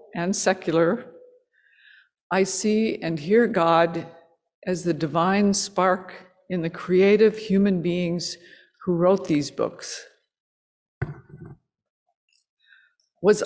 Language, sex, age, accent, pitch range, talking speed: English, female, 50-69, American, 170-210 Hz, 95 wpm